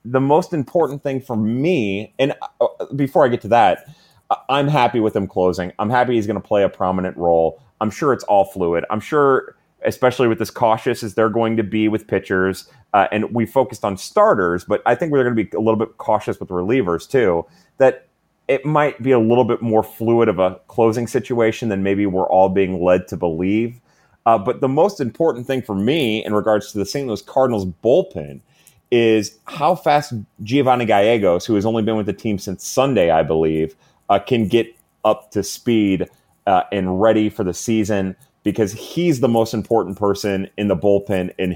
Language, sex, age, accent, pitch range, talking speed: English, male, 30-49, American, 95-120 Hz, 200 wpm